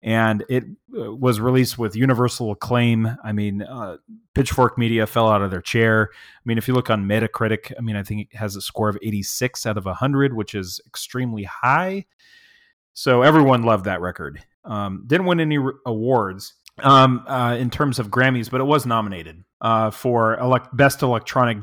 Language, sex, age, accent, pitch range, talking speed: English, male, 30-49, American, 105-125 Hz, 180 wpm